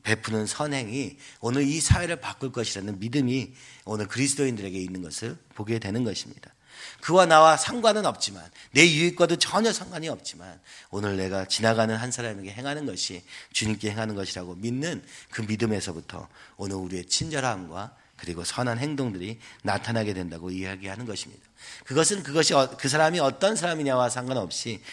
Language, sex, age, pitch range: Korean, male, 40-59, 105-145 Hz